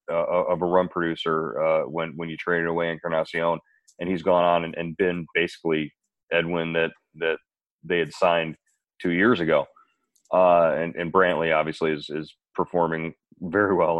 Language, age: English, 30-49